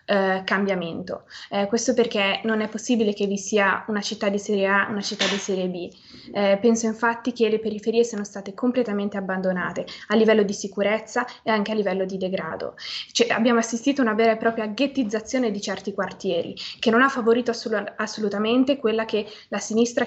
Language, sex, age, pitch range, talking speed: Italian, female, 20-39, 200-230 Hz, 175 wpm